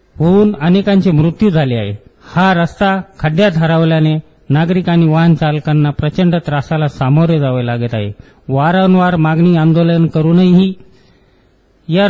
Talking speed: 125 wpm